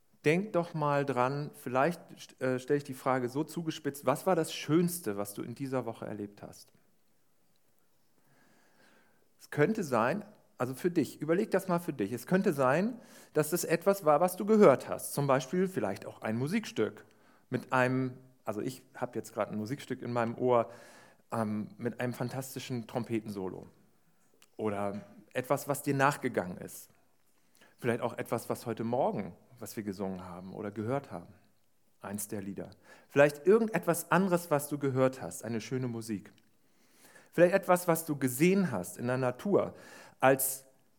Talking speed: 160 wpm